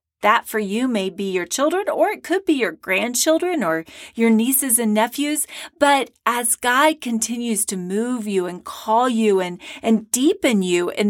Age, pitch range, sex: 40-59, 195-245 Hz, female